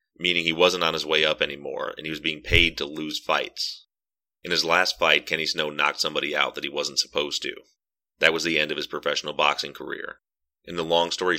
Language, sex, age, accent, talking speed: English, male, 30-49, American, 225 wpm